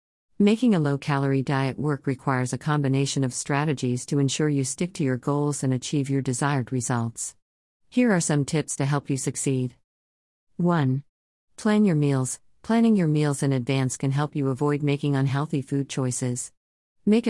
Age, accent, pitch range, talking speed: 50-69, American, 130-160 Hz, 165 wpm